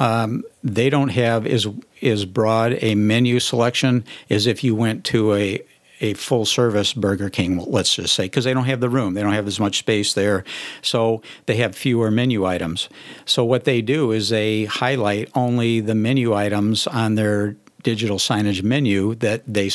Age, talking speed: 60-79, 180 wpm